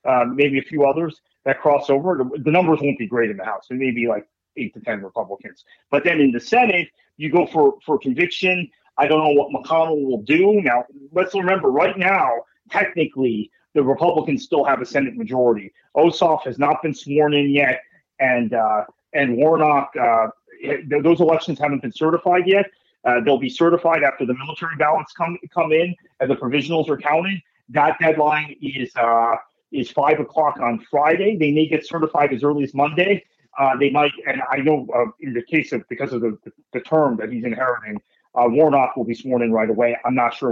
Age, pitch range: 40-59, 125-170 Hz